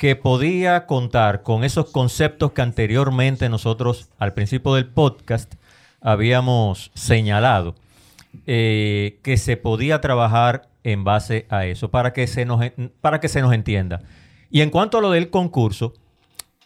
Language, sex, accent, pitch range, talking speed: Spanish, male, American, 110-135 Hz, 135 wpm